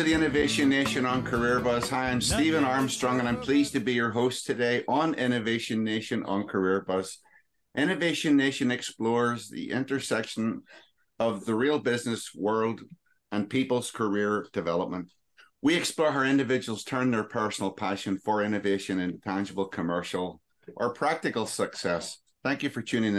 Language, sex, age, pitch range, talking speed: English, male, 50-69, 95-125 Hz, 155 wpm